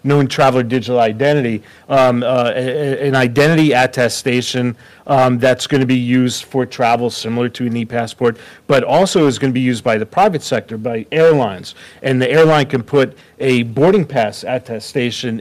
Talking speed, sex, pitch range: 175 wpm, male, 125-145 Hz